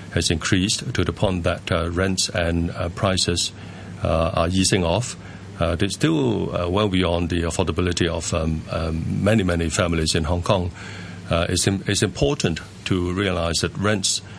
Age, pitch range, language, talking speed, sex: 50-69, 85-100 Hz, English, 165 wpm, male